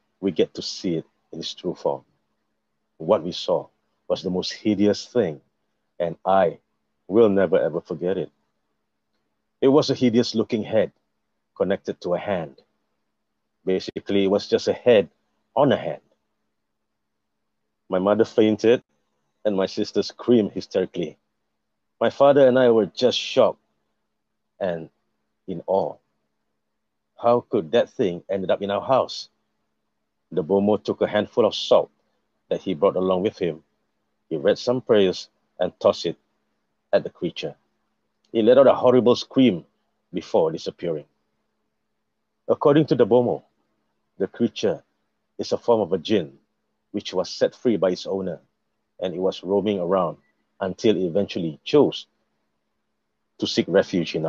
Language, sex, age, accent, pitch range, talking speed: English, male, 50-69, Malaysian, 70-105 Hz, 145 wpm